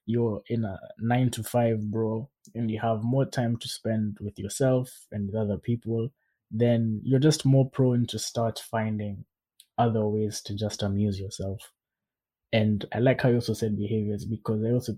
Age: 20-39